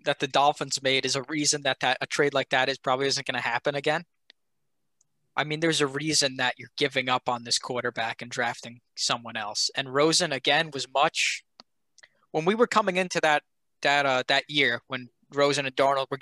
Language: English